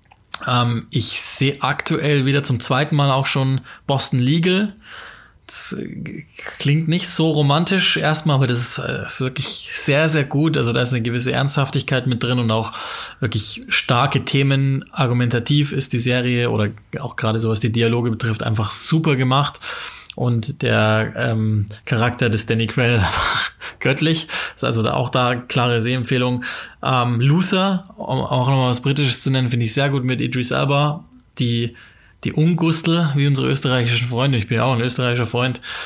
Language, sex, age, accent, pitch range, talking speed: German, male, 20-39, German, 115-135 Hz, 165 wpm